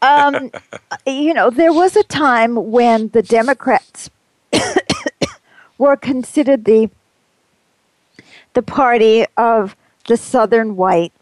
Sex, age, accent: female, 50-69, American